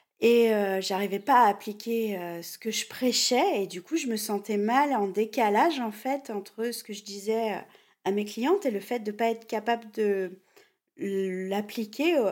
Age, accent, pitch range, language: 40-59, French, 190-245 Hz, French